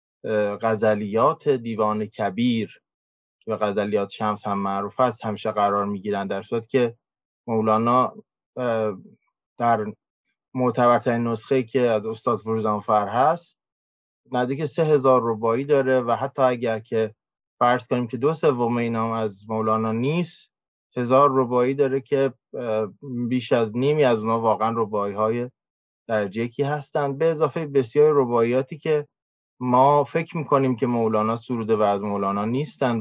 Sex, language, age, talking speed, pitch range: male, Persian, 20-39, 130 wpm, 110-130 Hz